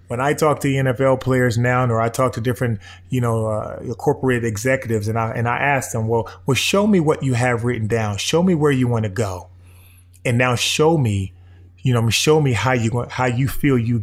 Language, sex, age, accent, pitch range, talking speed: English, male, 20-39, American, 105-130 Hz, 220 wpm